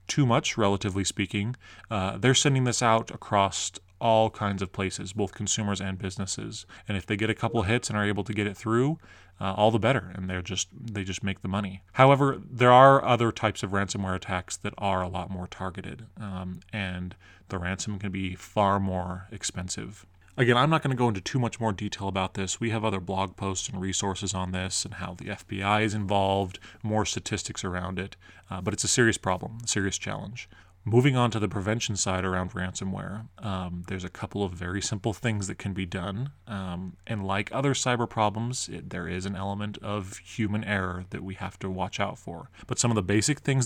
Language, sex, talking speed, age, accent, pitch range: English, male, 215 wpm, 20-39, American, 95-110 Hz